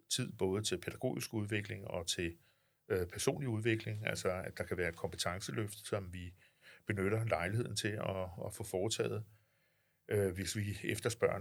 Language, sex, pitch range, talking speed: Danish, male, 95-110 Hz, 140 wpm